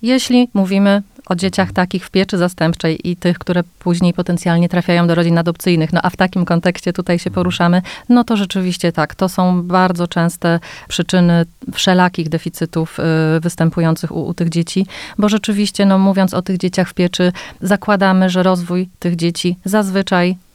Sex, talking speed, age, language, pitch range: female, 165 wpm, 30-49, Polish, 170-185 Hz